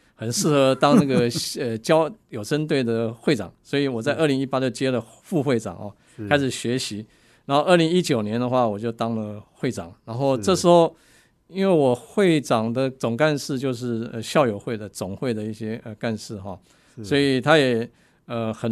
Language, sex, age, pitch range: Chinese, male, 50-69, 110-140 Hz